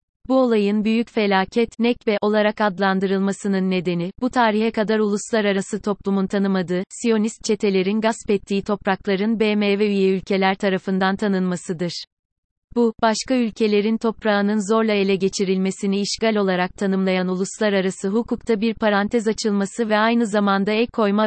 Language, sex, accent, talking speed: Turkish, female, native, 125 wpm